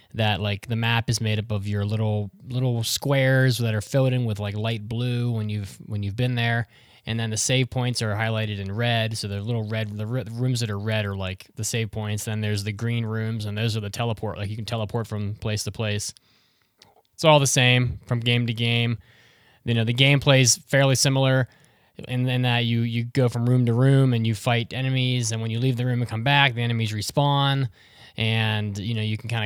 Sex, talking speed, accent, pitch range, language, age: male, 235 wpm, American, 105-125 Hz, English, 20-39